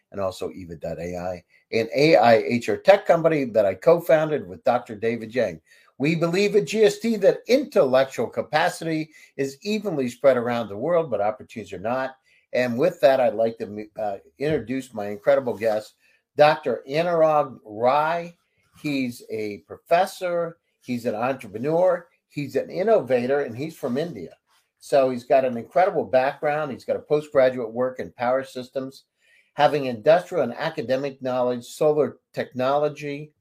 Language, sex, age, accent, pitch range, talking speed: English, male, 50-69, American, 120-185 Hz, 145 wpm